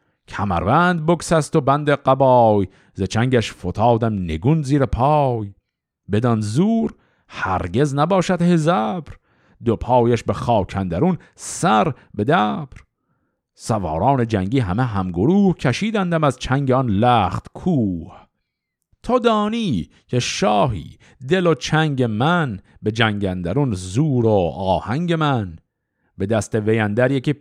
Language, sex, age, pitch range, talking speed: Persian, male, 50-69, 105-145 Hz, 115 wpm